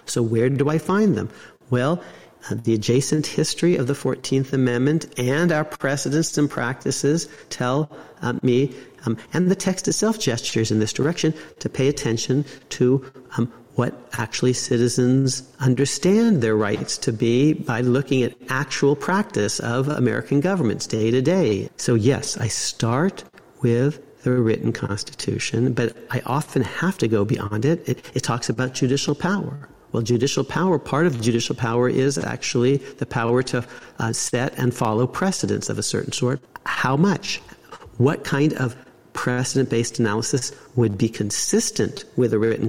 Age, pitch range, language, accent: 40-59, 120-145 Hz, English, American